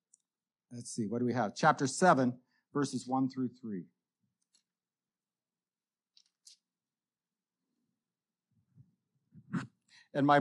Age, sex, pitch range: 50-69, male, 155-200 Hz